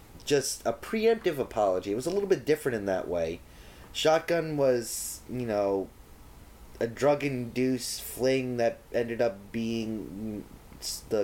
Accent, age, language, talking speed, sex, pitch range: American, 30-49, English, 135 wpm, male, 100-140 Hz